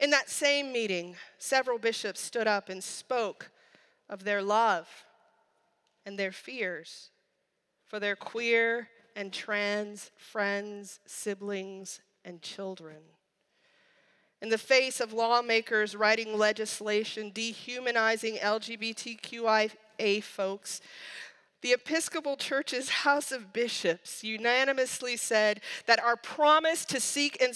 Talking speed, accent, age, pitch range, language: 105 wpm, American, 40-59, 205-265 Hz, English